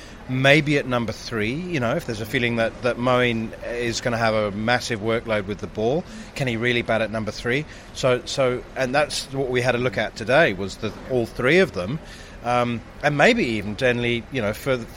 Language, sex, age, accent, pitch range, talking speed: English, male, 40-59, British, 105-130 Hz, 220 wpm